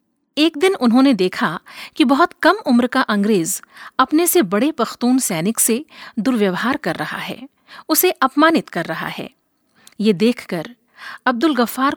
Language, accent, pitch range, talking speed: Hindi, native, 210-280 Hz, 145 wpm